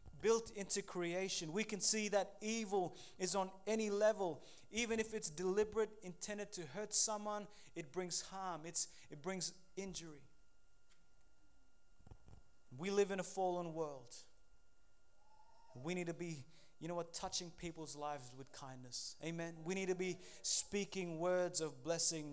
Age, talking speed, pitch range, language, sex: 30-49, 145 wpm, 165-200 Hz, English, male